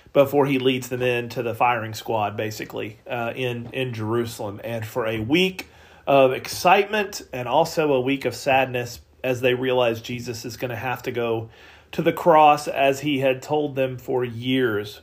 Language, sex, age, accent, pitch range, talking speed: English, male, 40-59, American, 115-145 Hz, 180 wpm